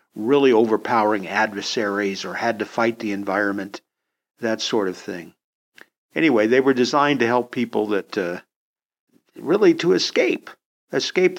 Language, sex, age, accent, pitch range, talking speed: English, male, 50-69, American, 110-150 Hz, 135 wpm